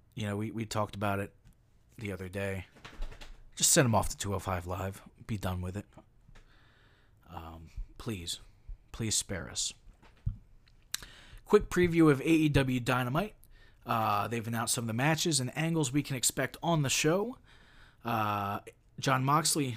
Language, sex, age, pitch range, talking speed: English, male, 30-49, 105-130 Hz, 150 wpm